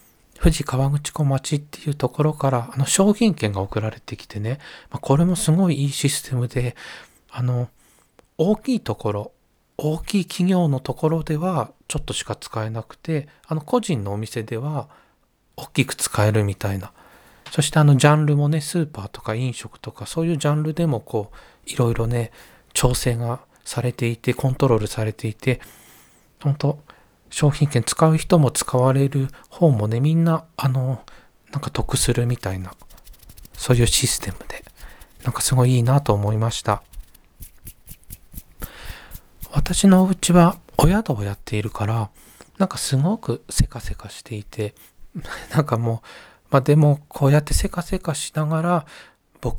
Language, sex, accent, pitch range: Japanese, male, native, 115-155 Hz